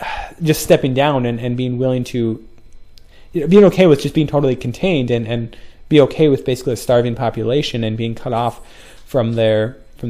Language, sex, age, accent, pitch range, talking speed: English, male, 20-39, American, 115-150 Hz, 195 wpm